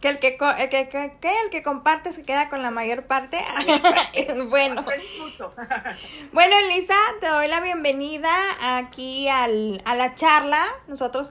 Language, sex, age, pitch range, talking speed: Spanish, female, 20-39, 250-315 Hz, 120 wpm